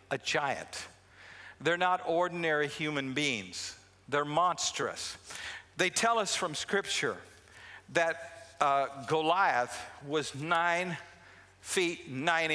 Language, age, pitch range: English, 50-69, 140-180 Hz